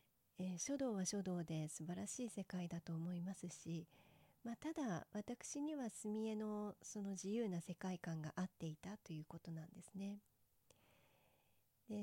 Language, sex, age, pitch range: Japanese, female, 40-59, 170-210 Hz